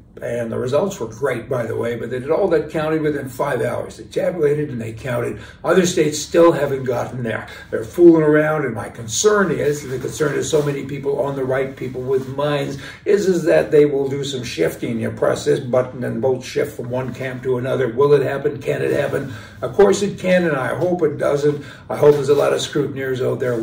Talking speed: 230 wpm